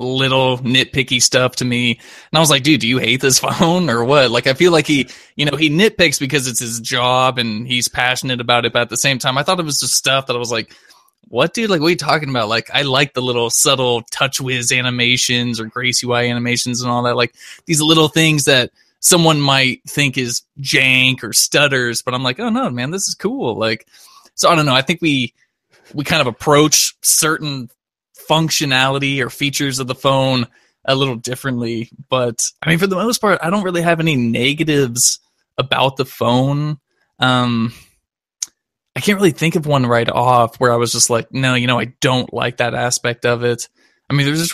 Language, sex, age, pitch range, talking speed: English, male, 20-39, 120-150 Hz, 220 wpm